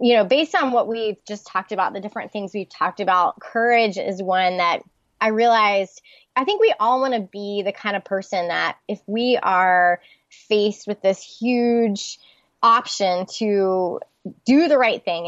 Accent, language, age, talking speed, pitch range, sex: American, English, 20-39, 180 wpm, 185-235 Hz, female